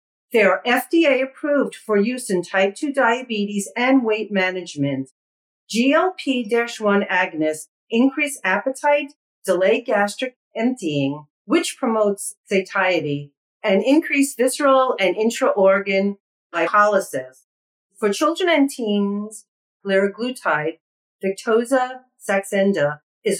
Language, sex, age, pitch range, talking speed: English, female, 40-59, 175-245 Hz, 90 wpm